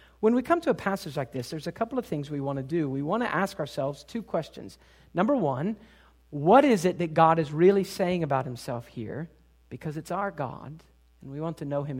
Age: 40-59